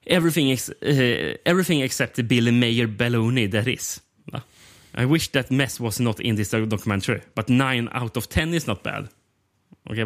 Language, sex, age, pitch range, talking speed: Swedish, male, 30-49, 110-145 Hz, 165 wpm